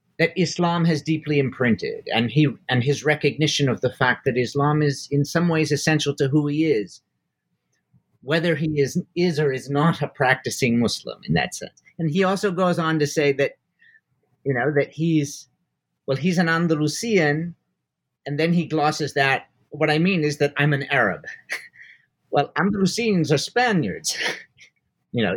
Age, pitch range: 50-69, 145-180 Hz